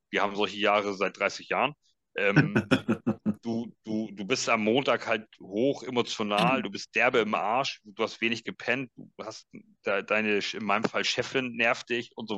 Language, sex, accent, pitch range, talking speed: German, male, German, 95-110 Hz, 175 wpm